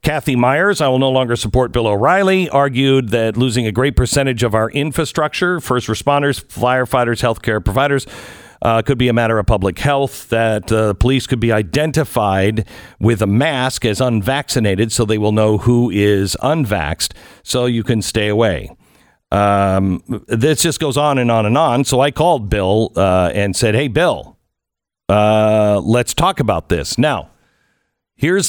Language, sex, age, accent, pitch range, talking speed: English, male, 50-69, American, 105-140 Hz, 170 wpm